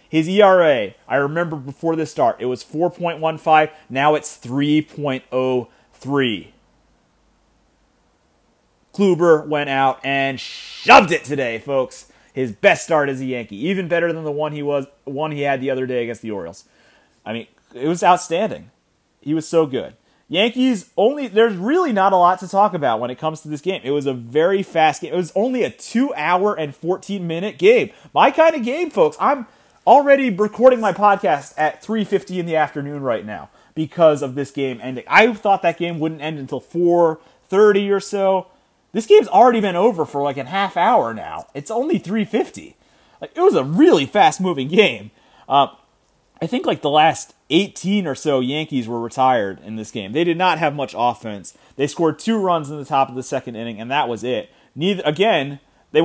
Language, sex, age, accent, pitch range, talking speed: English, male, 30-49, American, 140-195 Hz, 185 wpm